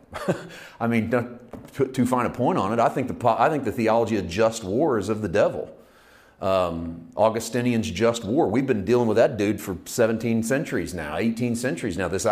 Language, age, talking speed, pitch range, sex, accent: English, 40-59, 195 wpm, 115-150 Hz, male, American